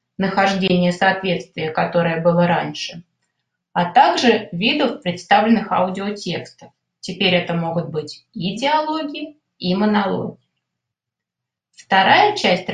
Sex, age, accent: female, 30-49, native